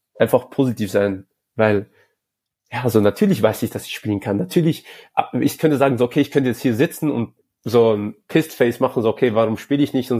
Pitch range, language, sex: 105-130 Hz, German, male